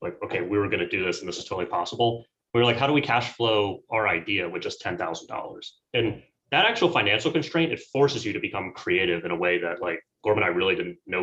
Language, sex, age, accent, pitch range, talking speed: English, male, 30-49, American, 105-150 Hz, 245 wpm